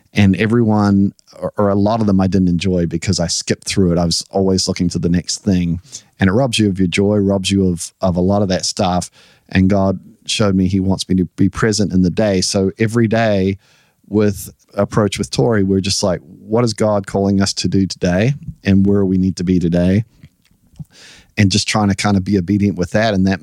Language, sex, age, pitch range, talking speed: English, male, 40-59, 95-105 Hz, 230 wpm